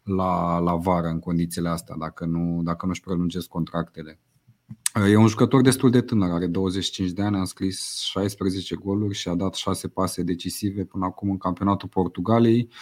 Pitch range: 90-110 Hz